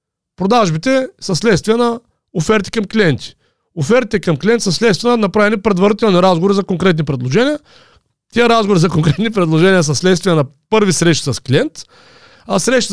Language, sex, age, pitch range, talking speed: Bulgarian, male, 40-59, 150-215 Hz, 155 wpm